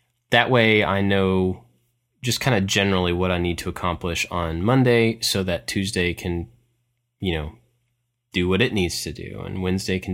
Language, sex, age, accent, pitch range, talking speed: English, male, 20-39, American, 90-115 Hz, 180 wpm